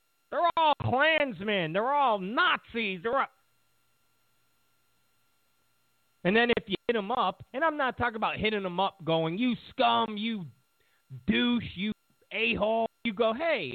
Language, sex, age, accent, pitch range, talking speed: English, male, 40-59, American, 140-230 Hz, 145 wpm